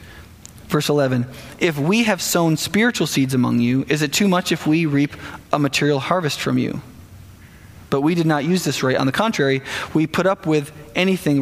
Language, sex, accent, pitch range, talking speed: English, male, American, 140-235 Hz, 195 wpm